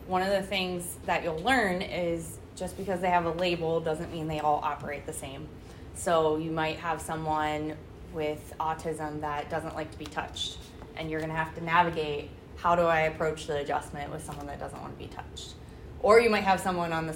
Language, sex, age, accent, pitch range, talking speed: English, female, 20-39, American, 155-185 Hz, 215 wpm